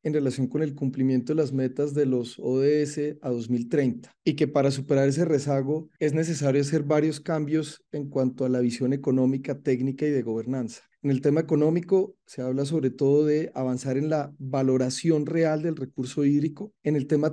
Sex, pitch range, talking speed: male, 130-155 Hz, 185 wpm